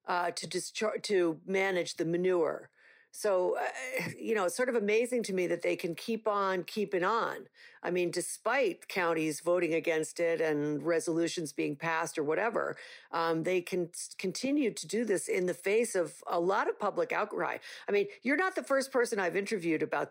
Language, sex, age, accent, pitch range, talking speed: English, female, 50-69, American, 170-245 Hz, 185 wpm